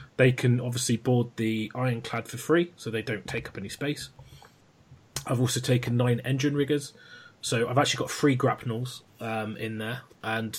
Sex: male